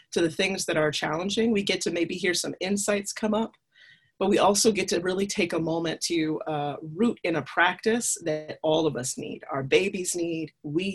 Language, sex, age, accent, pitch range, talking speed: English, female, 30-49, American, 160-200 Hz, 215 wpm